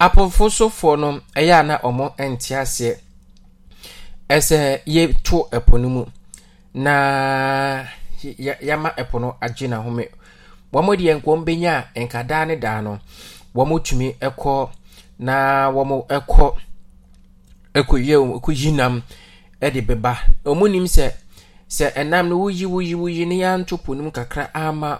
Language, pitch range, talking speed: English, 110-145 Hz, 95 wpm